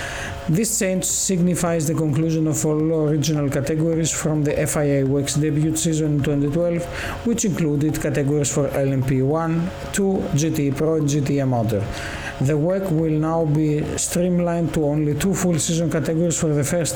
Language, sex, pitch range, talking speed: Greek, male, 145-165 Hz, 150 wpm